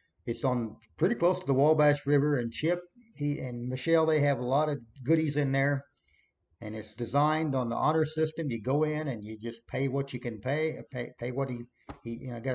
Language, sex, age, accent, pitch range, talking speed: English, male, 50-69, American, 125-155 Hz, 225 wpm